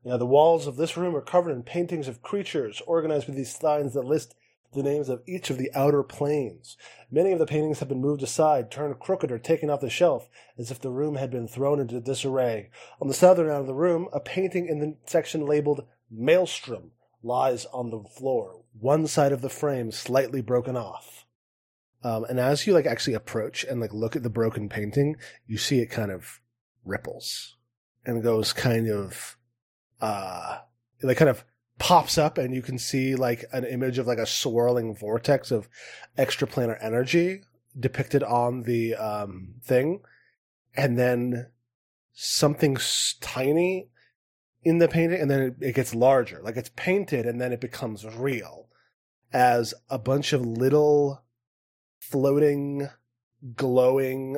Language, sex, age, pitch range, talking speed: English, male, 20-39, 120-145 Hz, 170 wpm